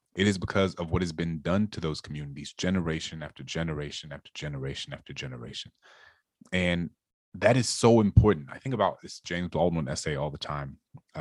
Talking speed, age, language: 195 wpm, 30-49, English